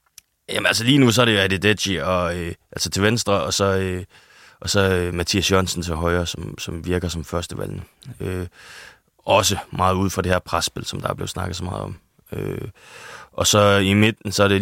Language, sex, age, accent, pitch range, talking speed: Danish, male, 20-39, native, 95-110 Hz, 215 wpm